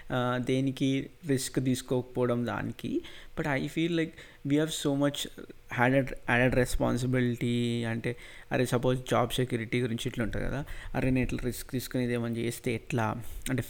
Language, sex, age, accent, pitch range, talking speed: Telugu, male, 20-39, native, 120-140 Hz, 140 wpm